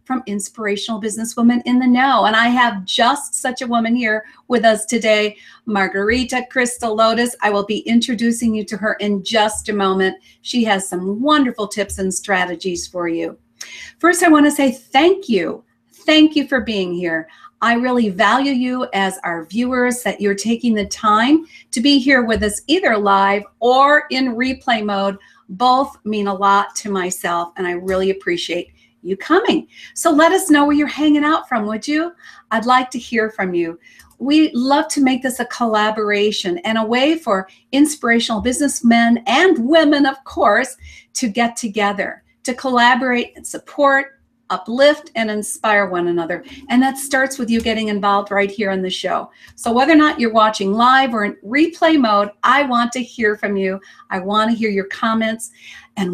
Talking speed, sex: 180 wpm, female